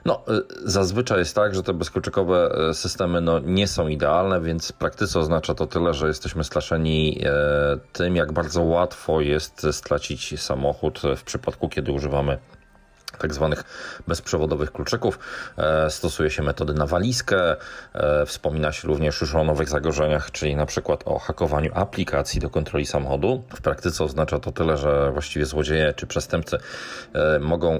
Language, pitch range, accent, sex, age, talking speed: Polish, 75-90 Hz, native, male, 40-59, 150 wpm